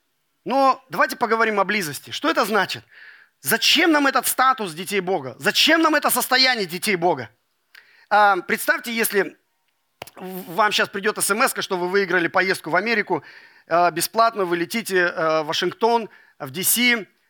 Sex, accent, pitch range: male, native, 180-255 Hz